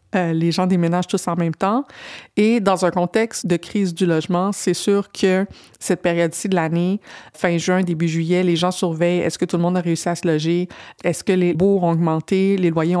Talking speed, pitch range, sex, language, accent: 220 wpm, 170-190 Hz, female, French, Canadian